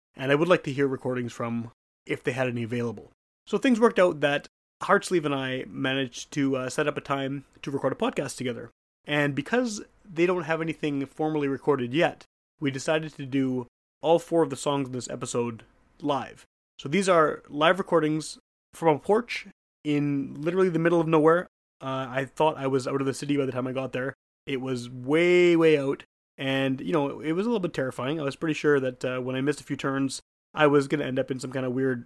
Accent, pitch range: American, 135-160 Hz